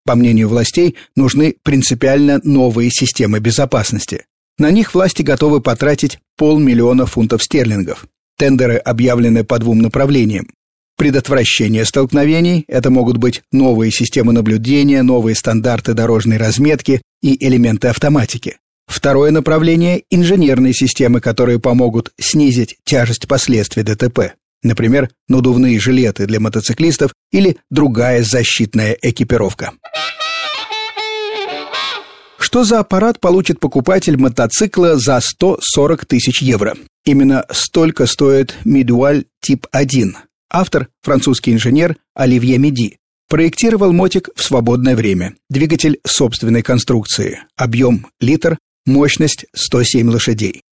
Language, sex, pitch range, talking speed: Russian, male, 120-145 Hz, 105 wpm